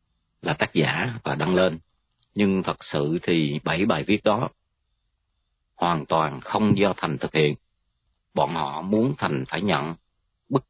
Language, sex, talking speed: Vietnamese, male, 155 wpm